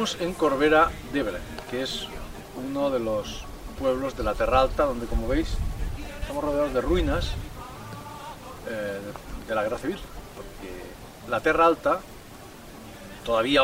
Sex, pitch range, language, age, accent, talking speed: male, 105-160 Hz, Spanish, 40-59, Spanish, 135 wpm